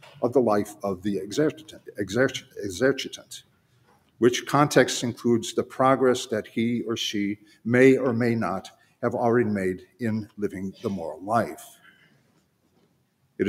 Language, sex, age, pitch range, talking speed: English, male, 50-69, 105-130 Hz, 130 wpm